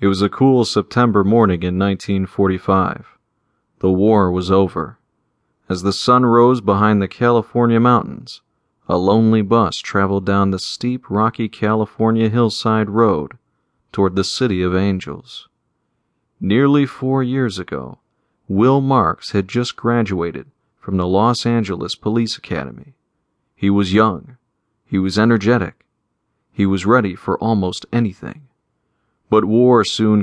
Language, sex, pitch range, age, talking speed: English, male, 100-120 Hz, 40-59, 130 wpm